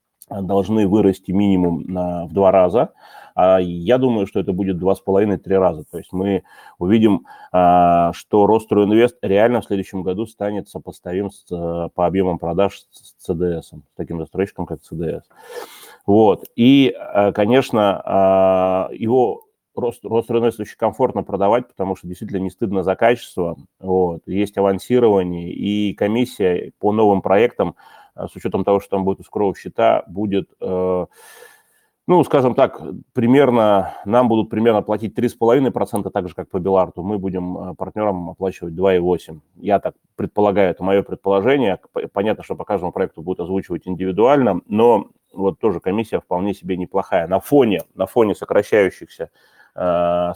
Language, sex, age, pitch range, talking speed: Russian, male, 30-49, 90-105 Hz, 140 wpm